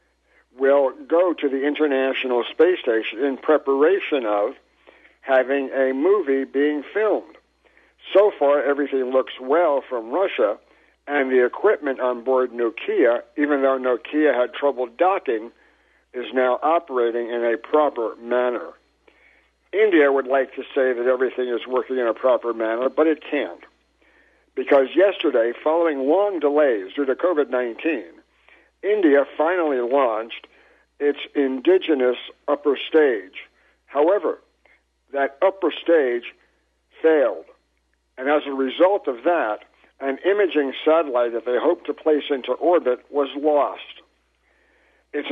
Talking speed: 125 wpm